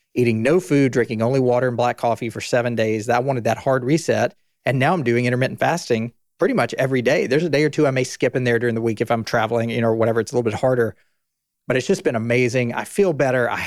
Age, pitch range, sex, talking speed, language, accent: 40-59, 115-150 Hz, male, 265 wpm, English, American